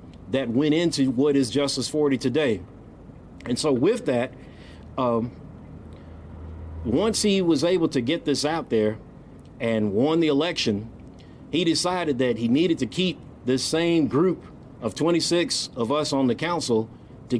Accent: American